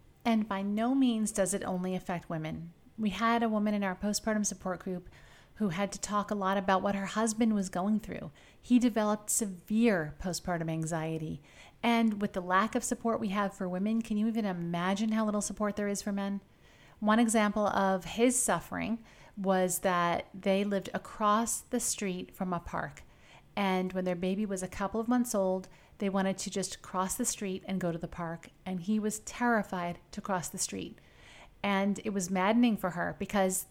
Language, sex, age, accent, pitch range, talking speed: English, female, 40-59, American, 185-225 Hz, 195 wpm